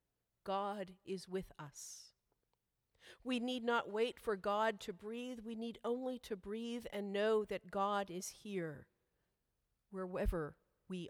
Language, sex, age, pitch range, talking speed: English, female, 40-59, 180-230 Hz, 135 wpm